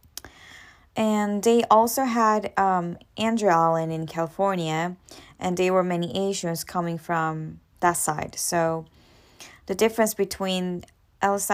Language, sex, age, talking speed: English, female, 10-29, 120 wpm